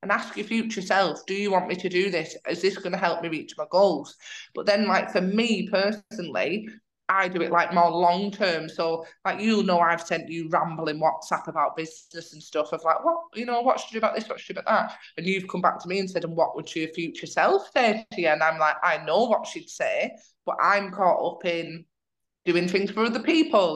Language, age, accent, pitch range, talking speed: English, 20-39, British, 170-205 Hz, 250 wpm